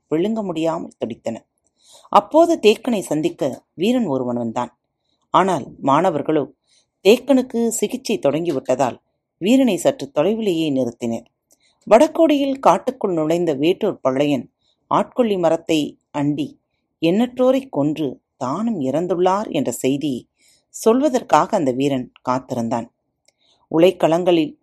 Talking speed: 95 wpm